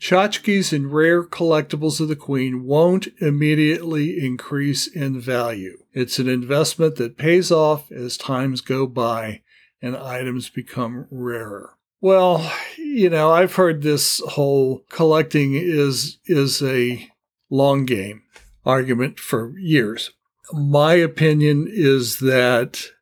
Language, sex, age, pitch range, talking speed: English, male, 60-79, 130-155 Hz, 120 wpm